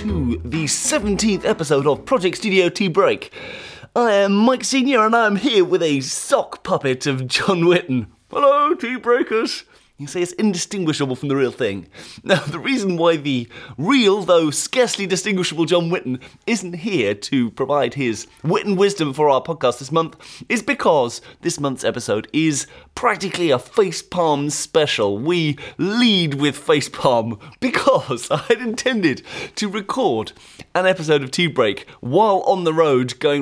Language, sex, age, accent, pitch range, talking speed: English, male, 30-49, British, 135-210 Hz, 160 wpm